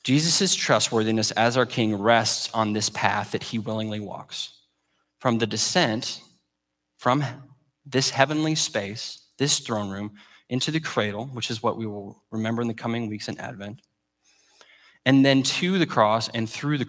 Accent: American